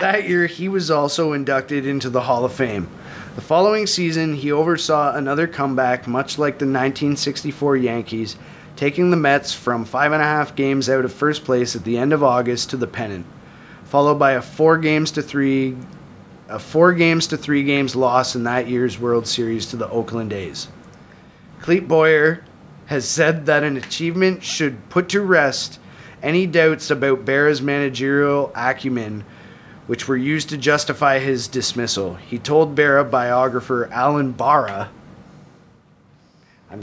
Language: English